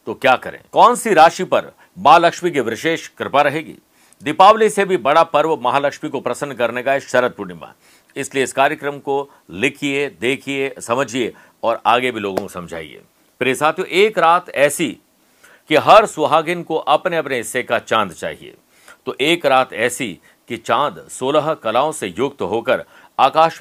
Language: Hindi